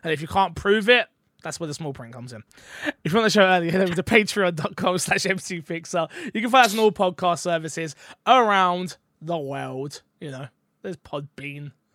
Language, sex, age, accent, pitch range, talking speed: English, male, 20-39, British, 145-205 Hz, 200 wpm